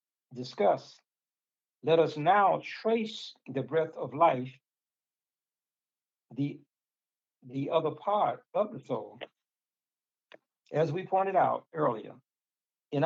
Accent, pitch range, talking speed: American, 135-170 Hz, 100 wpm